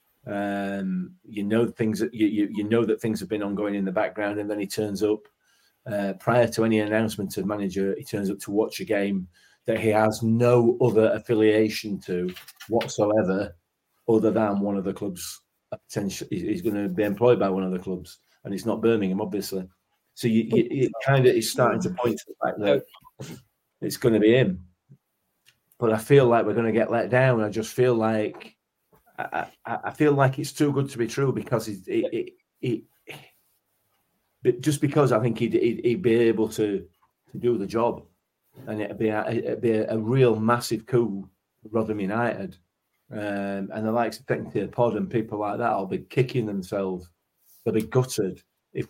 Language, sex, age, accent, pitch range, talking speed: English, male, 30-49, British, 100-115 Hz, 200 wpm